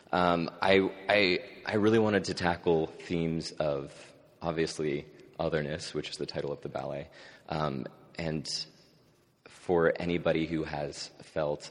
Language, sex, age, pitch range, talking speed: English, male, 30-49, 80-90 Hz, 135 wpm